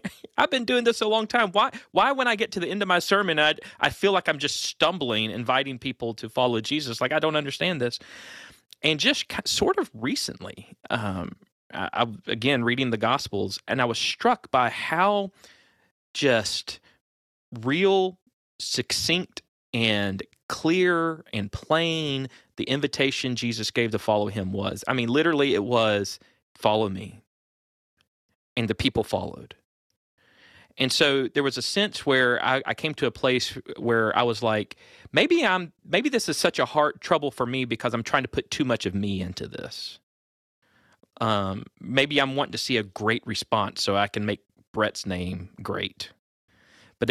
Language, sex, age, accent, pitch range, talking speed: English, male, 30-49, American, 110-155 Hz, 170 wpm